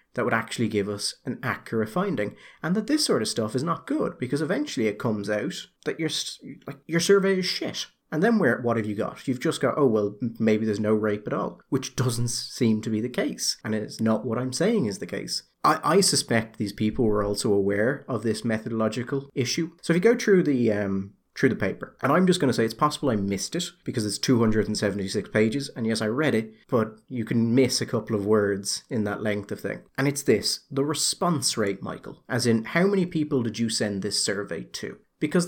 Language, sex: English, male